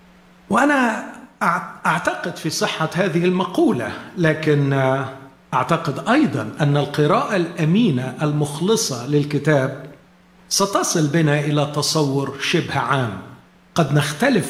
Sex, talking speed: male, 90 wpm